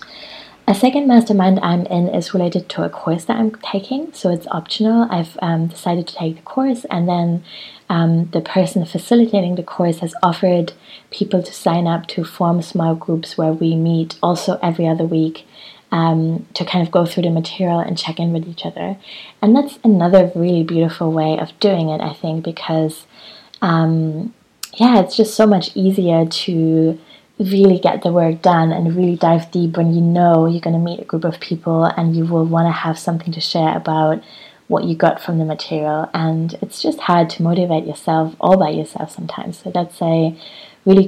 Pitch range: 160-185 Hz